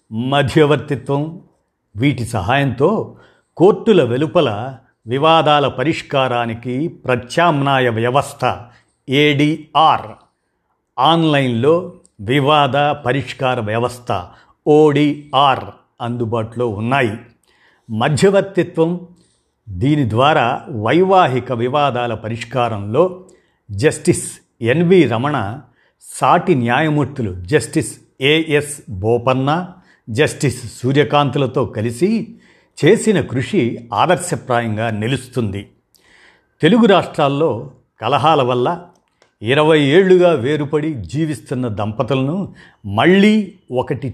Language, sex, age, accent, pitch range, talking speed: Telugu, male, 50-69, native, 120-155 Hz, 65 wpm